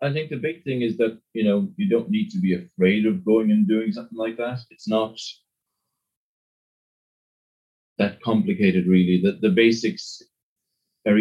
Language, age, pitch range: English, 30-49, 95-145 Hz